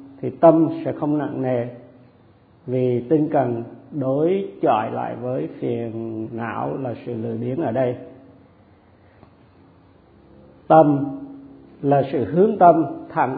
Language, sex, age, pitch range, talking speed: Vietnamese, male, 50-69, 125-160 Hz, 120 wpm